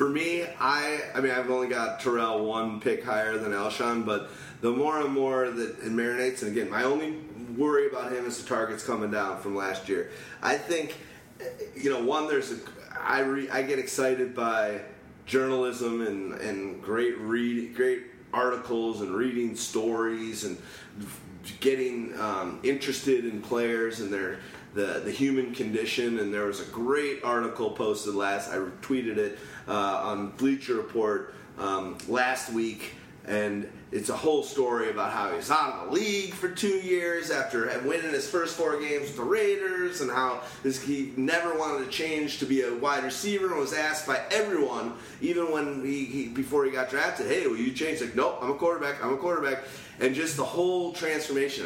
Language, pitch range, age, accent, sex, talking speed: English, 115-155 Hz, 30-49, American, male, 180 wpm